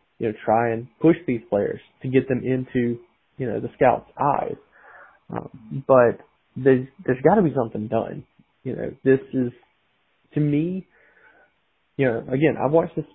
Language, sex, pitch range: English, male, 120-140 Hz